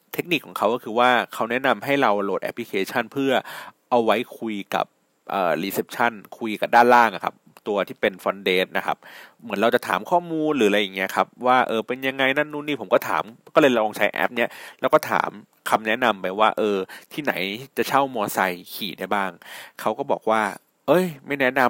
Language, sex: Thai, male